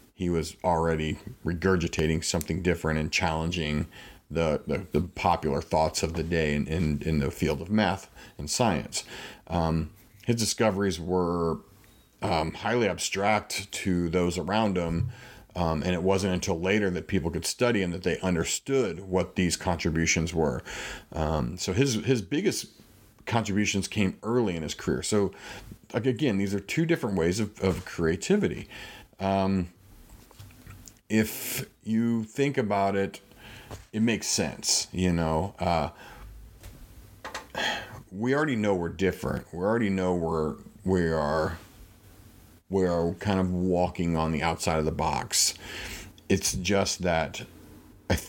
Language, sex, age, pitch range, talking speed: English, male, 40-59, 85-105 Hz, 140 wpm